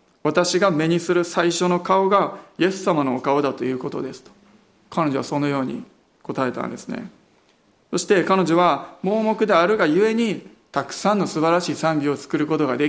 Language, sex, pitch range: Japanese, male, 145-185 Hz